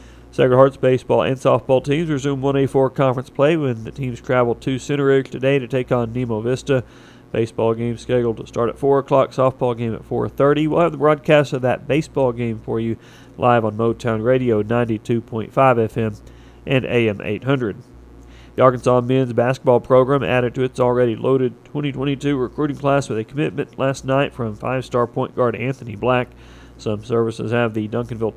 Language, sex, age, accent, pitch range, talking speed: English, male, 40-59, American, 115-135 Hz, 175 wpm